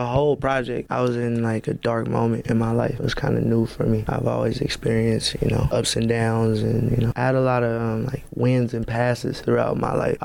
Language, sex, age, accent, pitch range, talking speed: English, male, 20-39, American, 115-130 Hz, 260 wpm